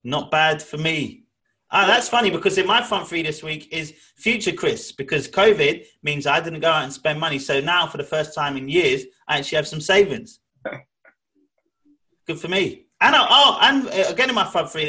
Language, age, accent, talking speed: English, 30-49, British, 215 wpm